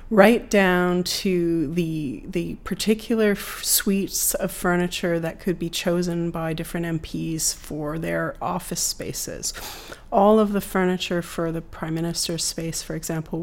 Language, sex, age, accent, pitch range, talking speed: English, female, 30-49, American, 160-185 Hz, 145 wpm